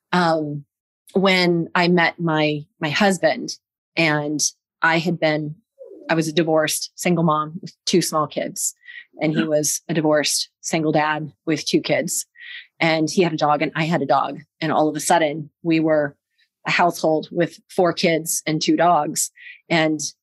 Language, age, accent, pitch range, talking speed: English, 30-49, American, 155-195 Hz, 170 wpm